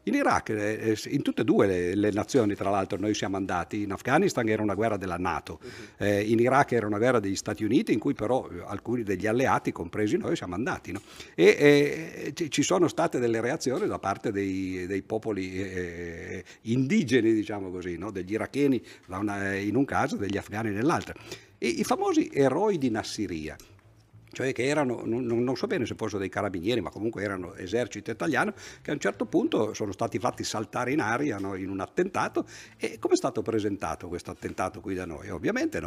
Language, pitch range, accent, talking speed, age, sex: Italian, 95-115 Hz, native, 180 wpm, 50-69, male